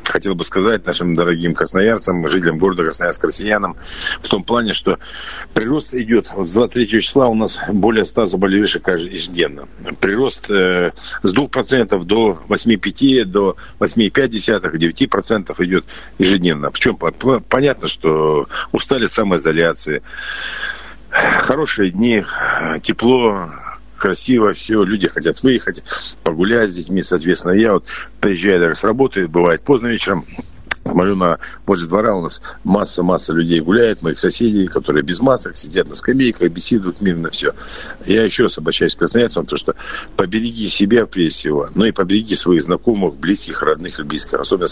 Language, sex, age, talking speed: Russian, male, 50-69, 135 wpm